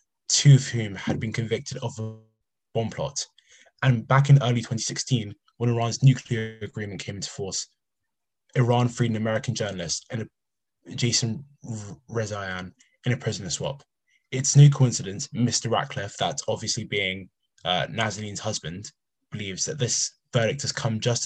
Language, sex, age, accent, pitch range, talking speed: English, male, 20-39, British, 110-130 Hz, 150 wpm